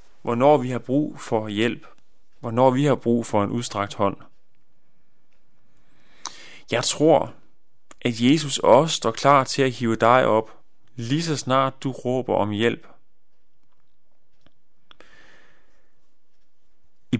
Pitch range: 110-145 Hz